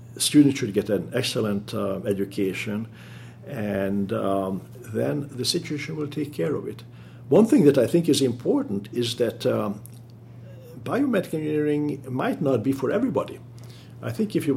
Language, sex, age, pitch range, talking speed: English, male, 60-79, 105-125 Hz, 155 wpm